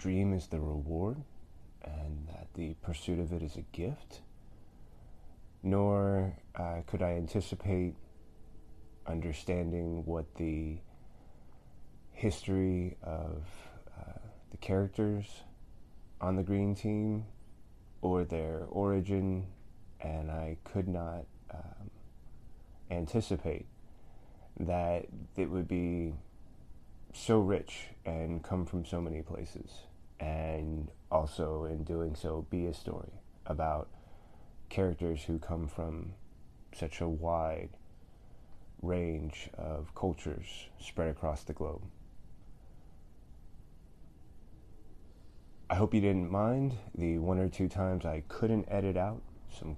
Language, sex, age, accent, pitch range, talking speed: English, male, 20-39, American, 80-95 Hz, 105 wpm